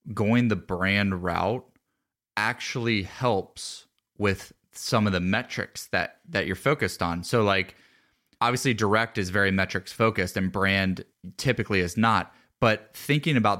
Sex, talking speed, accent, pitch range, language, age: male, 140 wpm, American, 95-115 Hz, English, 20-39